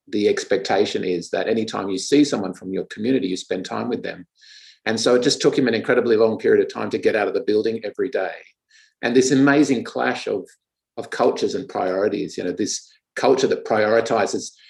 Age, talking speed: 50-69, 210 wpm